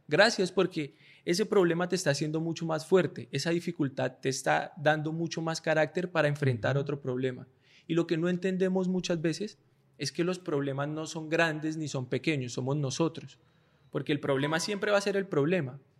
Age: 20-39